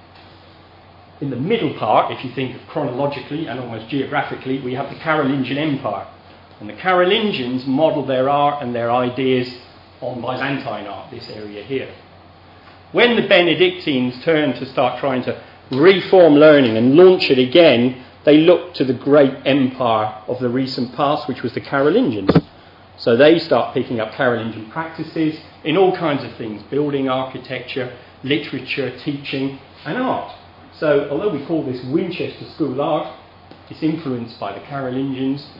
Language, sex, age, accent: English, male, 40-59, British